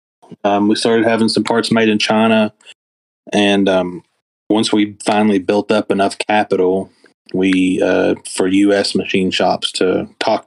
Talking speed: 150 wpm